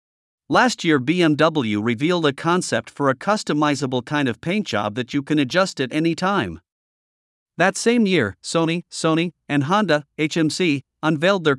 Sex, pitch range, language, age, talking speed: male, 130-170 Hz, Vietnamese, 50-69, 155 wpm